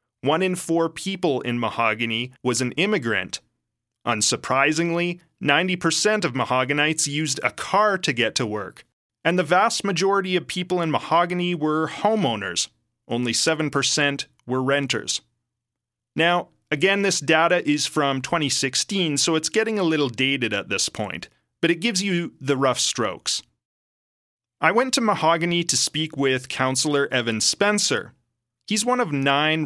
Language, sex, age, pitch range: English, male, 30-49, 125-175 Hz